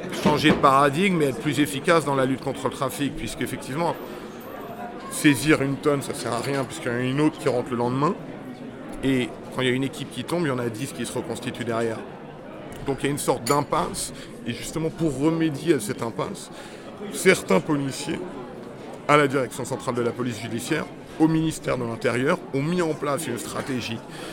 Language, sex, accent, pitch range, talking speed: French, male, French, 130-160 Hz, 205 wpm